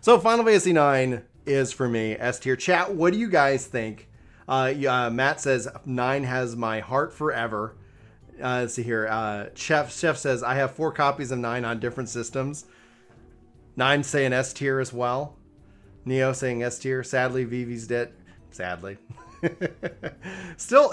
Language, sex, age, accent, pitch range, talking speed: English, male, 30-49, American, 115-145 Hz, 165 wpm